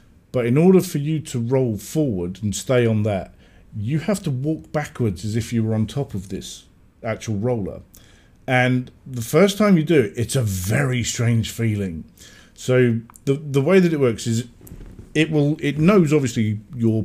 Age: 40-59